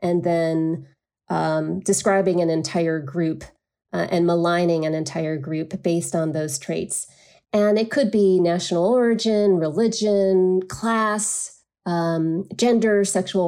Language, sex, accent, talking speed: English, female, American, 125 wpm